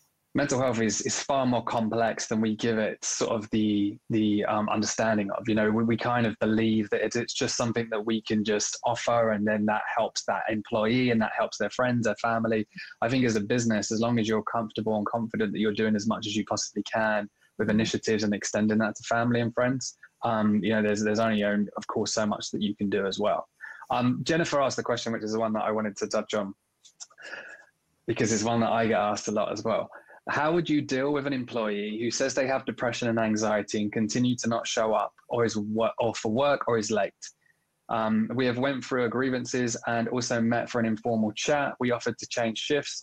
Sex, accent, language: male, British, English